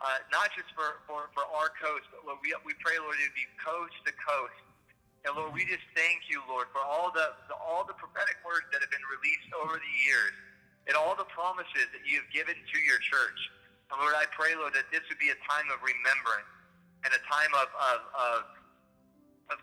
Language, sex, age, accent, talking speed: English, male, 30-49, American, 225 wpm